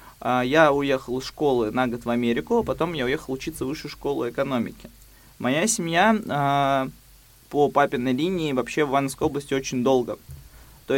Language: Russian